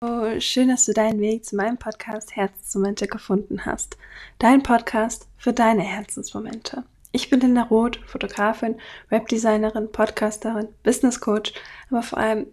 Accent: German